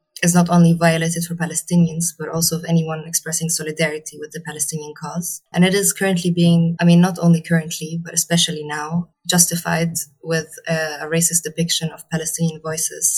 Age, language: 20-39, English